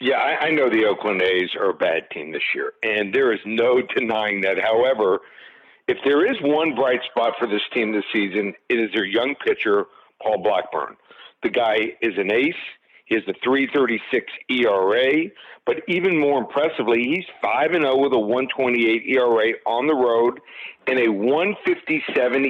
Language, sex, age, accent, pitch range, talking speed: English, male, 50-69, American, 120-165 Hz, 170 wpm